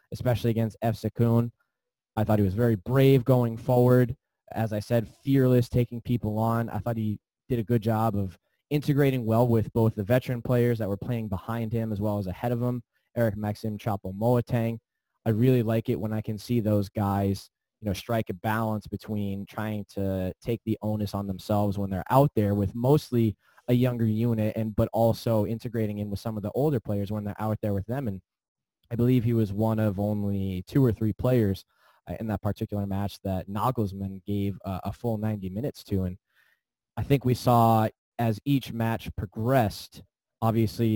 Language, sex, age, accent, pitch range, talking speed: English, male, 20-39, American, 100-120 Hz, 195 wpm